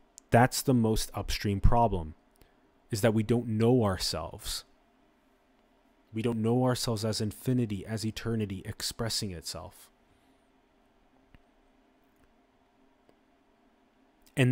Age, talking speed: 30-49, 90 wpm